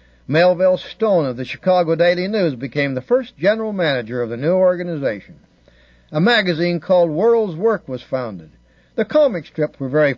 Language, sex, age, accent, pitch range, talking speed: English, male, 60-79, American, 130-185 Hz, 165 wpm